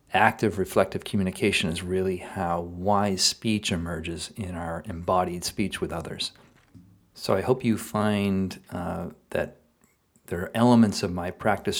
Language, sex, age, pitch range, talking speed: English, male, 40-59, 90-110 Hz, 140 wpm